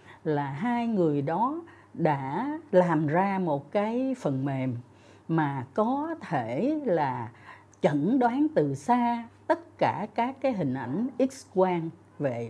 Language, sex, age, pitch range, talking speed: Vietnamese, female, 60-79, 140-230 Hz, 135 wpm